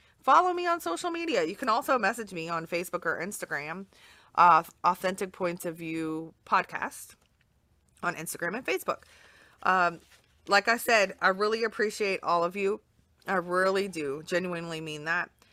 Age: 30-49